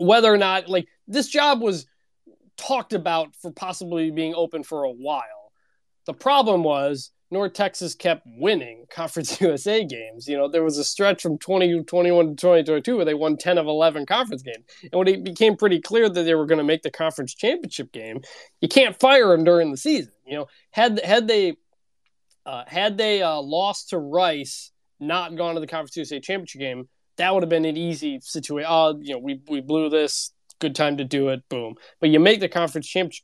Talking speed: 205 wpm